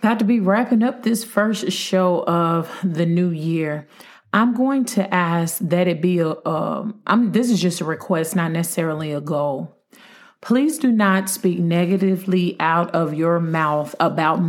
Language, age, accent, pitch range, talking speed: English, 40-59, American, 165-195 Hz, 165 wpm